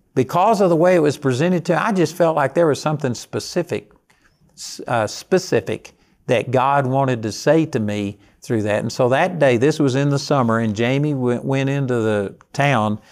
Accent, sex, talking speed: American, male, 195 wpm